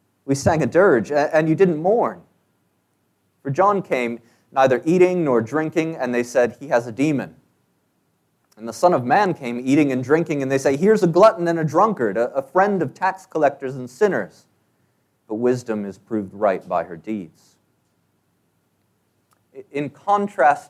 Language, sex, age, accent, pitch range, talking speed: English, male, 30-49, American, 110-155 Hz, 165 wpm